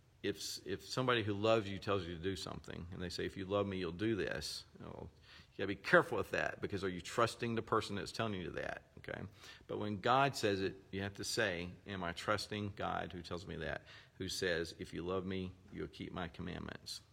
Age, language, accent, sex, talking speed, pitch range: 50-69, English, American, male, 230 wpm, 90-110 Hz